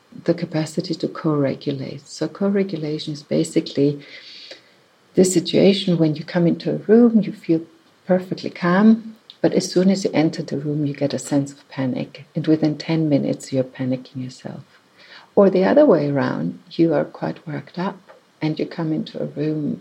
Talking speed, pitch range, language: 175 wpm, 145-165 Hz, English